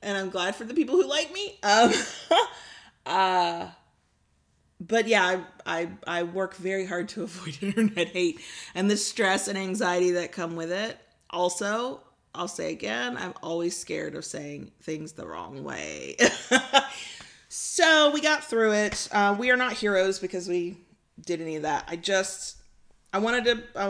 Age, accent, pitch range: 30-49, American, 170-220 Hz